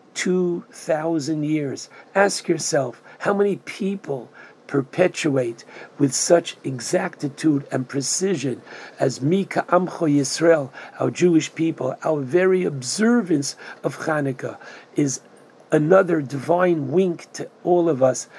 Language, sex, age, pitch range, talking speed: English, male, 60-79, 135-170 Hz, 110 wpm